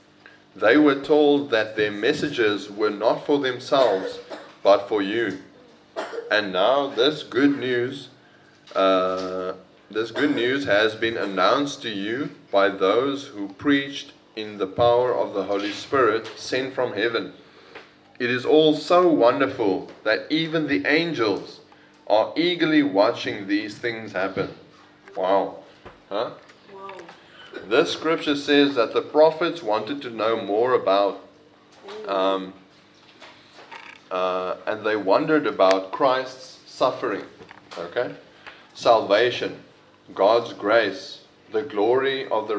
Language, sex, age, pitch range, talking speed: English, male, 20-39, 105-150 Hz, 120 wpm